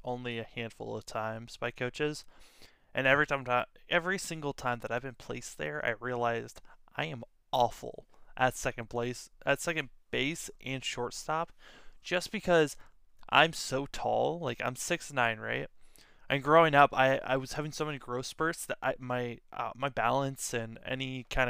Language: English